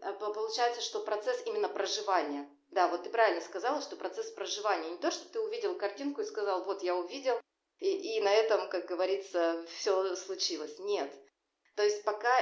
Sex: female